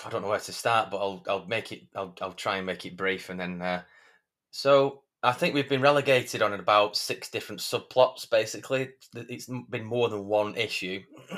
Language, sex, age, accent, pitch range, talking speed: English, male, 20-39, British, 100-120 Hz, 205 wpm